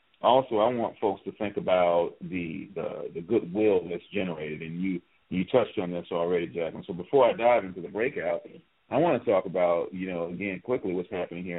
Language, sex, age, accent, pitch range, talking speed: English, male, 40-59, American, 90-100 Hz, 205 wpm